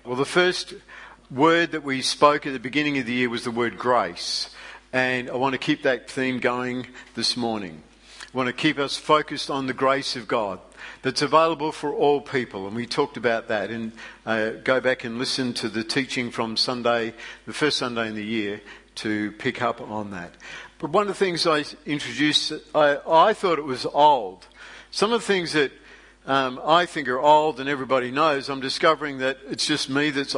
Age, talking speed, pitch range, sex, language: 50-69, 205 wpm, 125-155 Hz, male, English